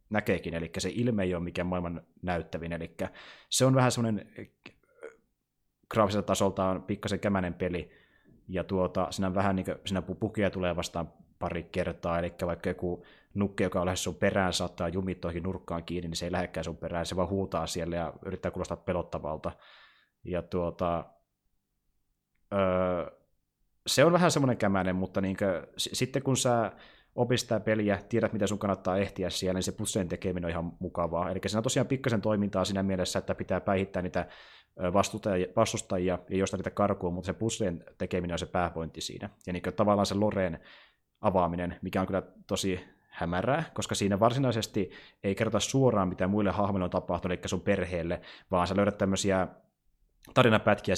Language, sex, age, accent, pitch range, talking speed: Finnish, male, 30-49, native, 90-100 Hz, 165 wpm